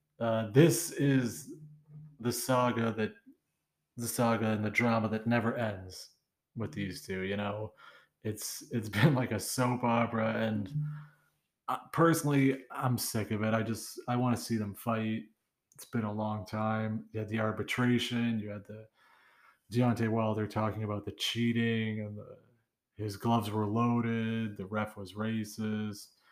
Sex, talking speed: male, 150 wpm